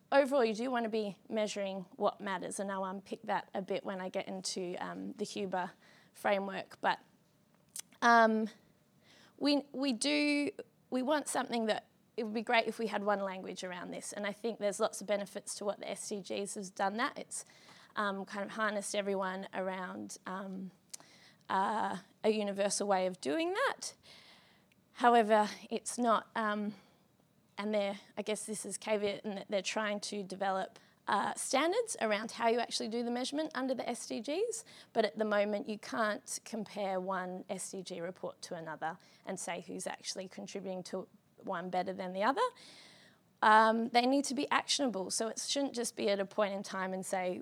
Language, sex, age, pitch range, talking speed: English, female, 20-39, 195-230 Hz, 180 wpm